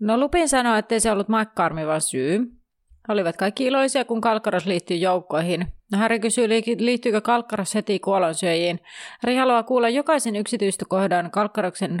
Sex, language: female, Finnish